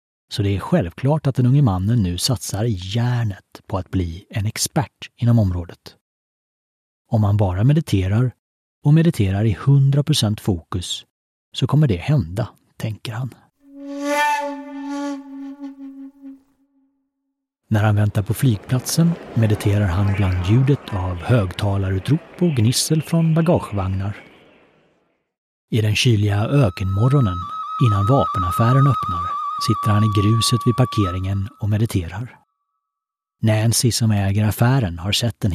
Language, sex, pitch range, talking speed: Swedish, male, 100-135 Hz, 120 wpm